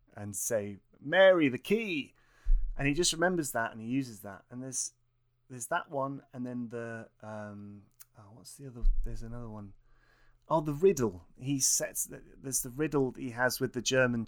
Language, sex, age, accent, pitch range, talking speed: English, male, 30-49, British, 110-130 Hz, 190 wpm